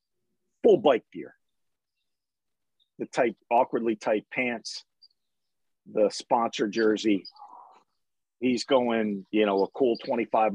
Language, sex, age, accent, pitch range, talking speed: English, male, 50-69, American, 105-165 Hz, 95 wpm